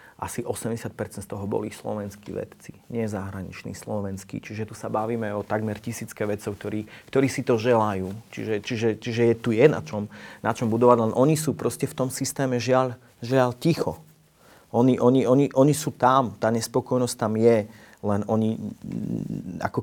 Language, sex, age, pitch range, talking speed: Slovak, male, 30-49, 105-125 Hz, 175 wpm